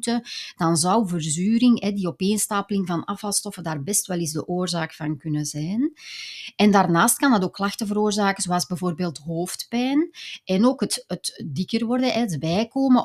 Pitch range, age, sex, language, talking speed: 165-220 Hz, 30-49, female, Dutch, 155 wpm